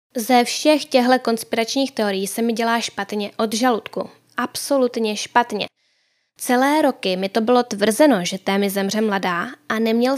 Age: 10-29